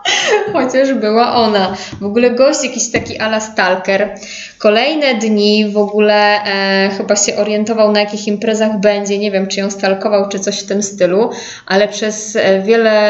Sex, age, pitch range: female, 20-39, 200-245 Hz